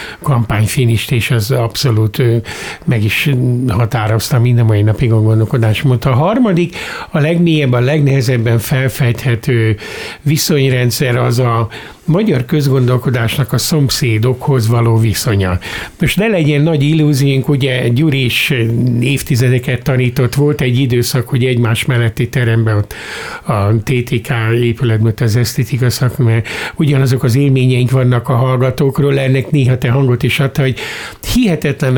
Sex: male